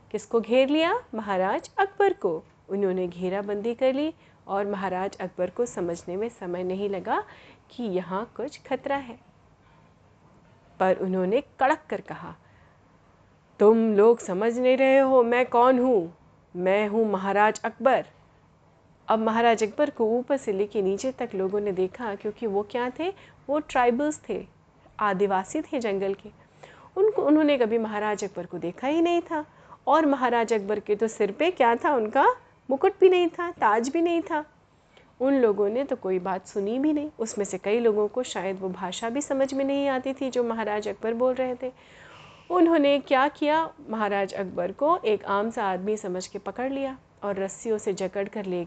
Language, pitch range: Hindi, 200-270 Hz